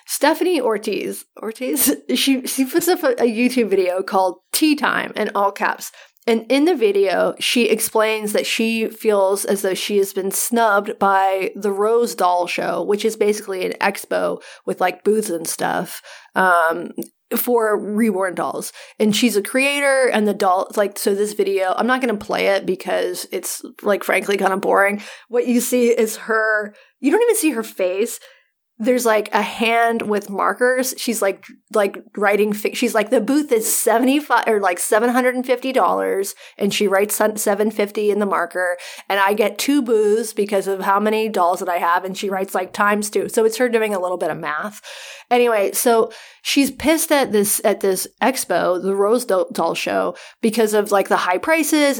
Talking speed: 190 wpm